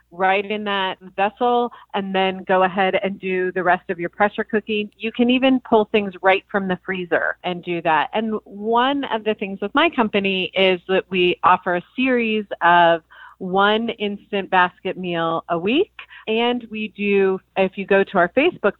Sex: female